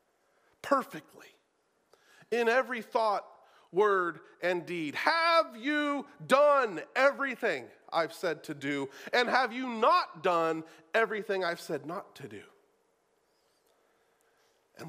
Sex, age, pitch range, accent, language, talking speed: male, 40-59, 160-255 Hz, American, English, 110 wpm